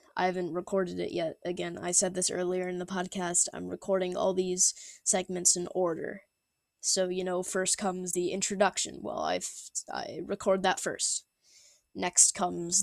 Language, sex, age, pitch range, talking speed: English, female, 10-29, 175-195 Hz, 170 wpm